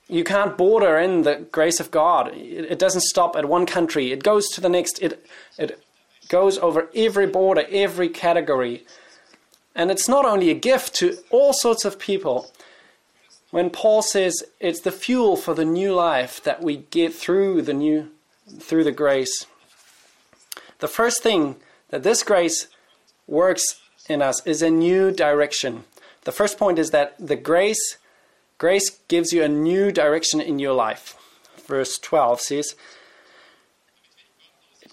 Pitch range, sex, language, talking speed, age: 155-205 Hz, male, English, 155 wpm, 20-39